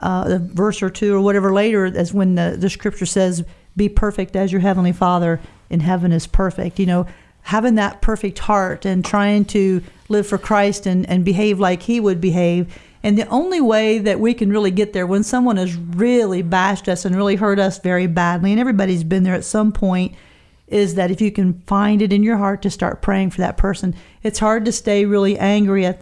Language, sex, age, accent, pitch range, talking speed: English, female, 40-59, American, 185-220 Hz, 220 wpm